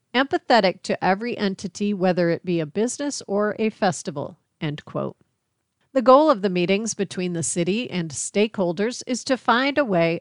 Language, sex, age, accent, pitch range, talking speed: English, female, 40-59, American, 180-245 Hz, 170 wpm